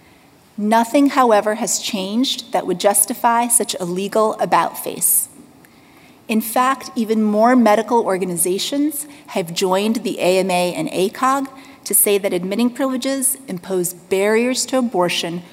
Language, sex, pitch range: English, female, 195-245 Hz